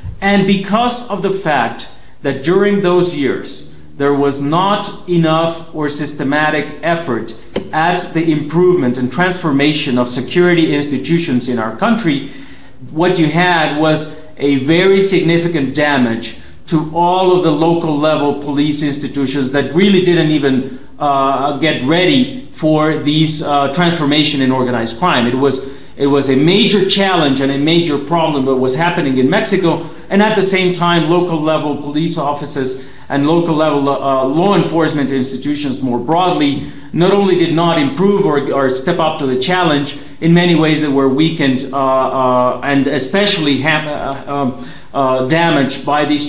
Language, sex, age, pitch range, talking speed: English, male, 40-59, 135-170 Hz, 155 wpm